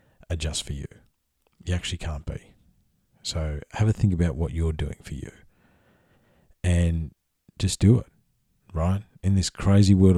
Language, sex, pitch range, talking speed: English, male, 80-95 Hz, 160 wpm